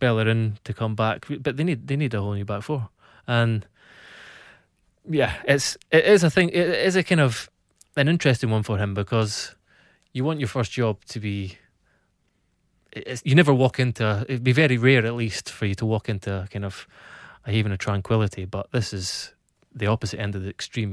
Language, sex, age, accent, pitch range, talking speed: English, male, 20-39, British, 105-130 Hz, 200 wpm